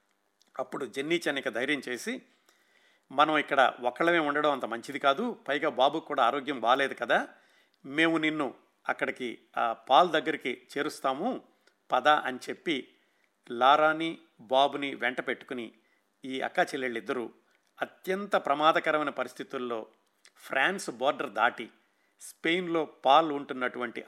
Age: 50-69